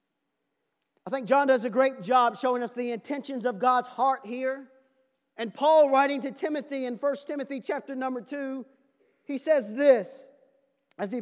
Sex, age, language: male, 40-59, English